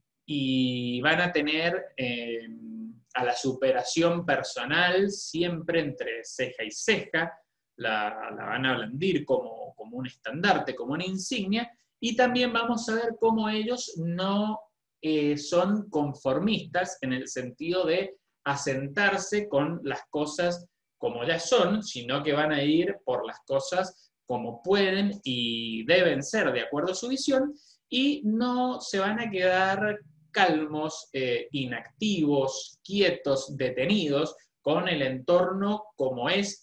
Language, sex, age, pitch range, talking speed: Spanish, male, 30-49, 130-195 Hz, 135 wpm